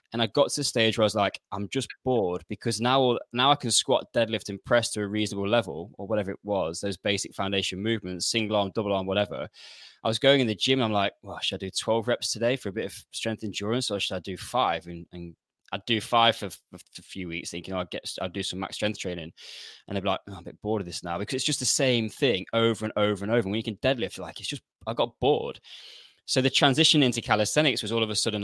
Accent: British